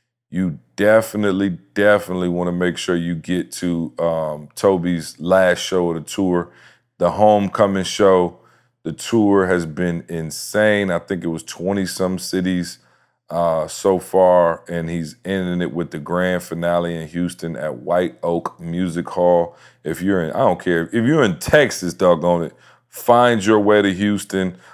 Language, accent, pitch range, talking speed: English, American, 85-95 Hz, 160 wpm